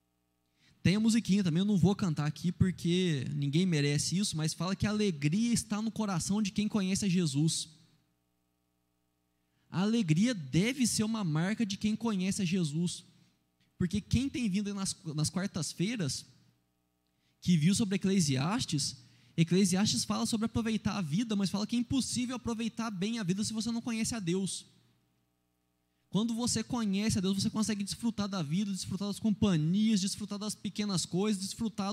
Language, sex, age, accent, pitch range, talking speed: Portuguese, male, 20-39, Brazilian, 135-210 Hz, 165 wpm